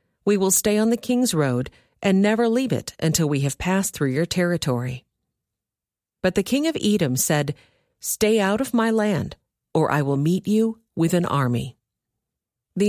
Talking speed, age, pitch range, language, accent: 175 wpm, 50-69, 150-210 Hz, English, American